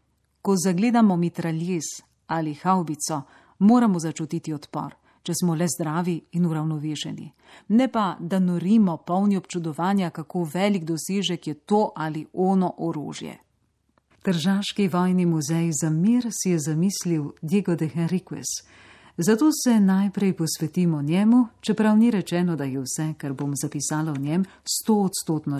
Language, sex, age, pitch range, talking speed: Italian, female, 40-59, 160-200 Hz, 135 wpm